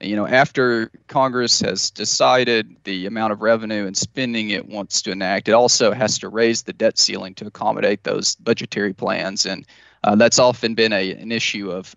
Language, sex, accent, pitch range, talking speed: English, male, American, 105-115 Hz, 190 wpm